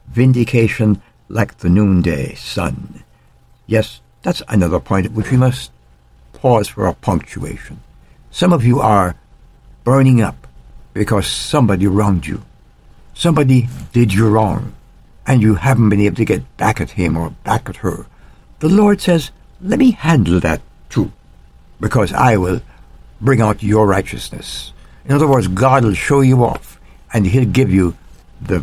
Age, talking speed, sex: 60-79, 155 wpm, male